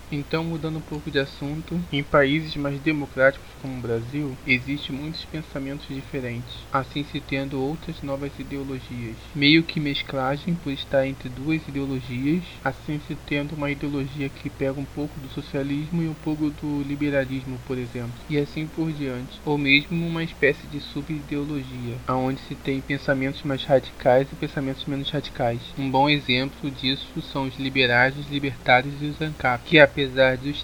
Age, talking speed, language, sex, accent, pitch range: 20-39, 165 wpm, Portuguese, male, Brazilian, 135-150 Hz